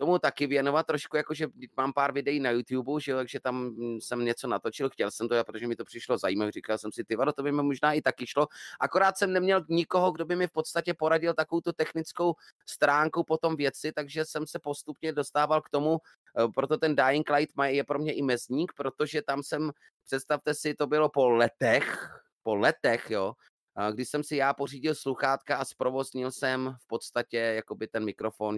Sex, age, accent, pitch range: male, 30-49, native, 110-145 Hz